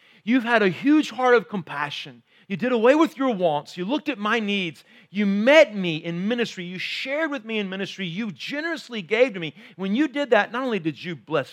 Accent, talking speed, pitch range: American, 225 wpm, 170-250 Hz